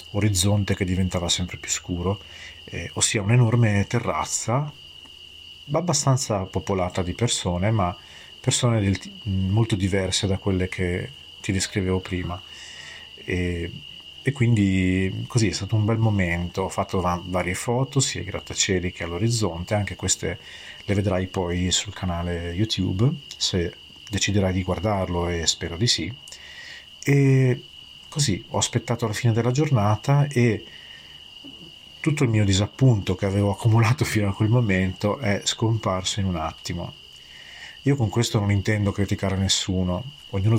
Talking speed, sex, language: 135 wpm, male, Italian